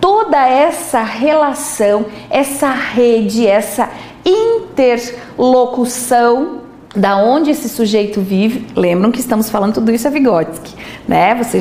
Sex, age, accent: female, 40-59, Brazilian